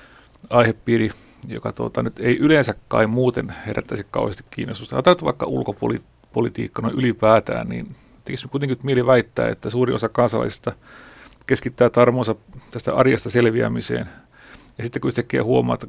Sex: male